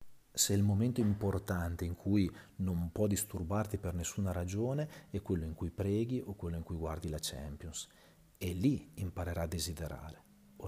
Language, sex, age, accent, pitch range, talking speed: Italian, male, 40-59, native, 85-105 Hz, 170 wpm